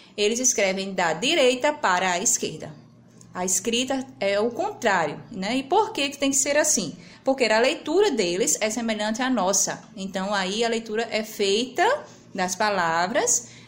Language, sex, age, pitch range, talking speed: Portuguese, female, 20-39, 200-245 Hz, 160 wpm